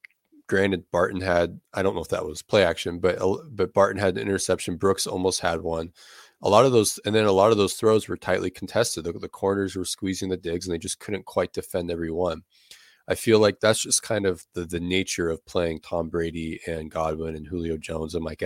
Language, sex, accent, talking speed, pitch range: English, male, American, 230 wpm, 85-100 Hz